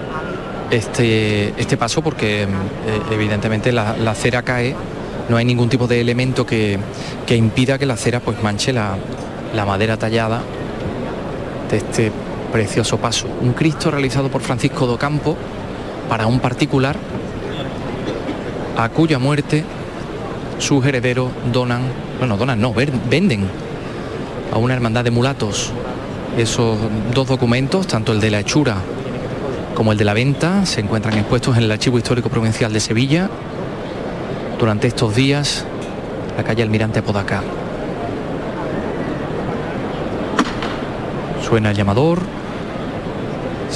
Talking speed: 125 wpm